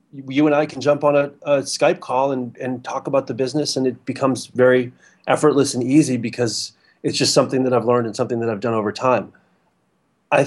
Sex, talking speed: male, 220 wpm